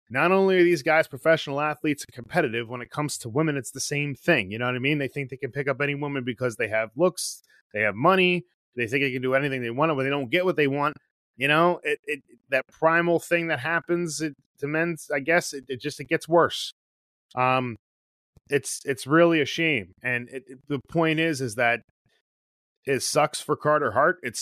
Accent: American